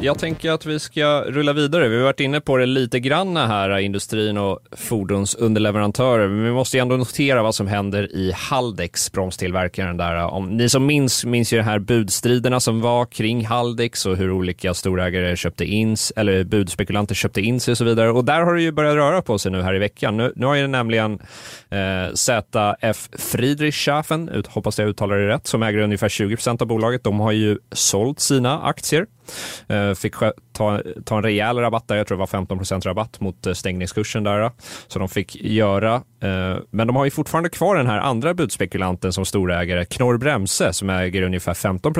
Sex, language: male, Swedish